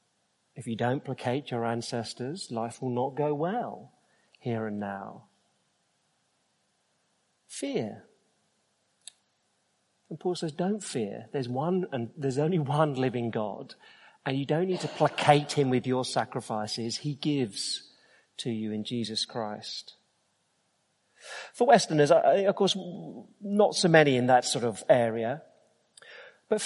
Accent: British